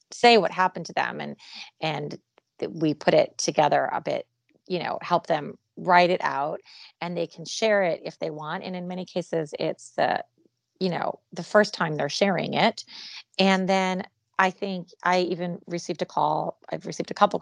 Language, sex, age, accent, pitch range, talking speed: English, female, 30-49, American, 150-190 Hz, 195 wpm